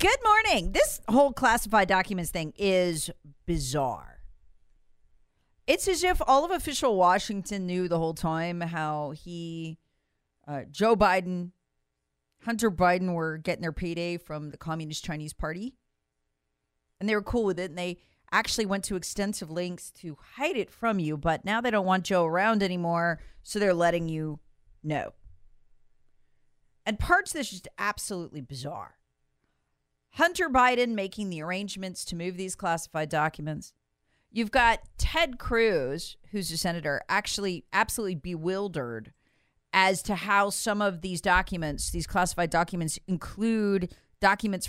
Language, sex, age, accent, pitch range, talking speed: English, female, 40-59, American, 160-215 Hz, 140 wpm